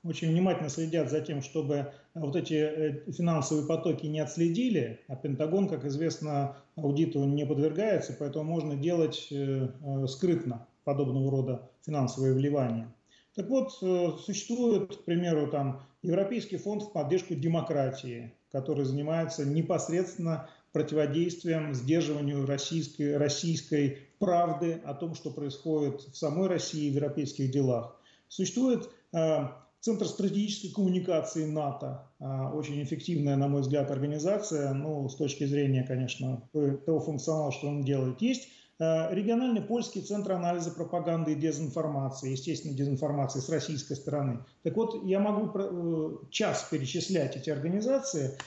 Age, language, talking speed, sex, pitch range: 40-59, Russian, 120 wpm, male, 140-175 Hz